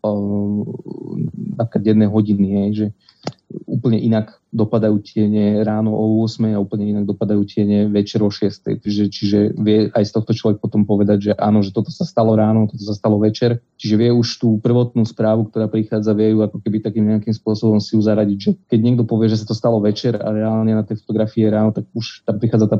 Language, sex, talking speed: Slovak, male, 200 wpm